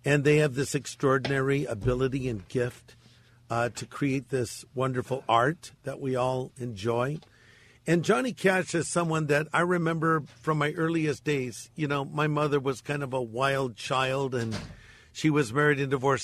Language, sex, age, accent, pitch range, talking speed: English, male, 50-69, American, 125-160 Hz, 170 wpm